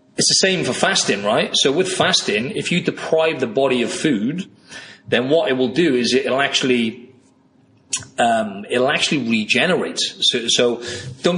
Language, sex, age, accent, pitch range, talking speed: English, male, 30-49, British, 115-145 Hz, 165 wpm